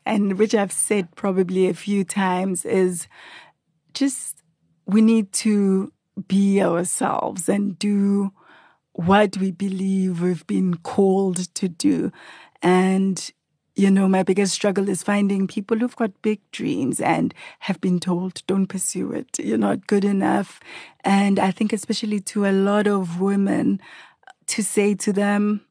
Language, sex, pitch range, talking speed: English, female, 190-215 Hz, 145 wpm